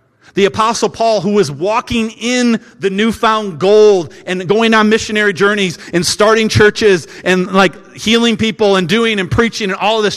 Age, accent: 40-59, American